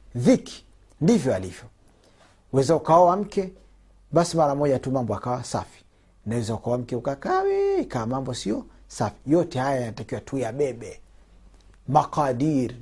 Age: 50-69